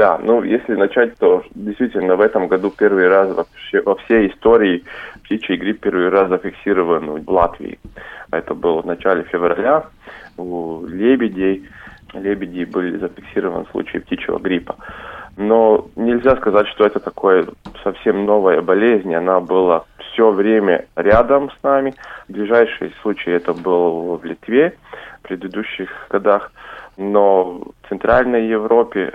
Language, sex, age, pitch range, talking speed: Russian, male, 20-39, 90-115 Hz, 130 wpm